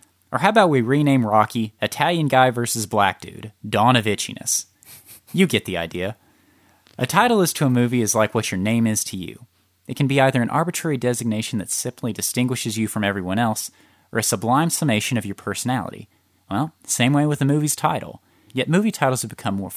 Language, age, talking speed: English, 30-49, 200 wpm